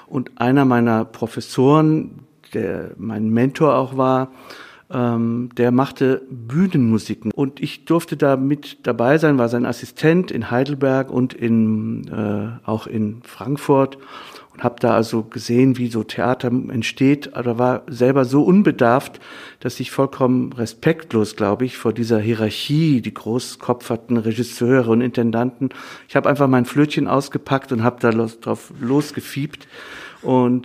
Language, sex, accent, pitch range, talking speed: German, male, German, 115-140 Hz, 140 wpm